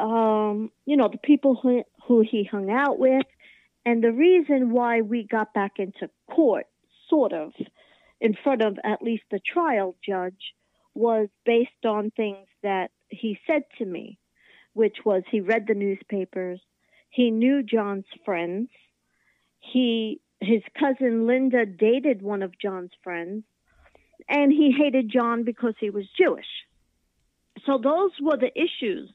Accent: American